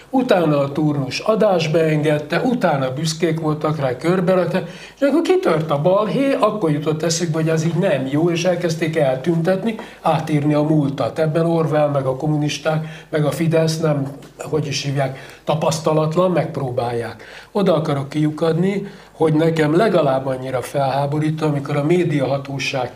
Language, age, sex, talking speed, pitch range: Hungarian, 60-79, male, 140 wpm, 145-180 Hz